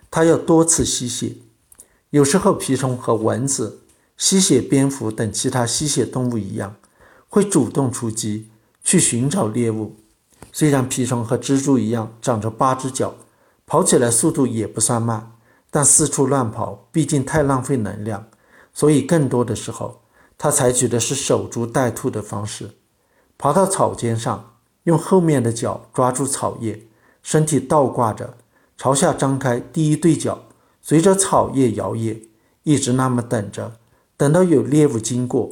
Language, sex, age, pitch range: Chinese, male, 50-69, 115-145 Hz